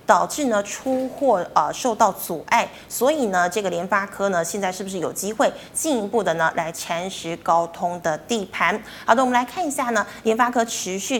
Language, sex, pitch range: Chinese, female, 200-255 Hz